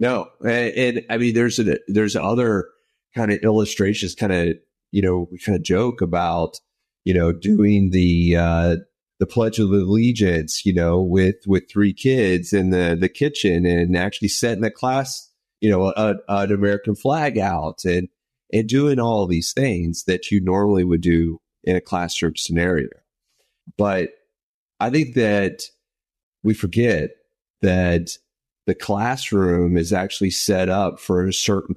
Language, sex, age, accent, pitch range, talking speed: English, male, 30-49, American, 90-110 Hz, 160 wpm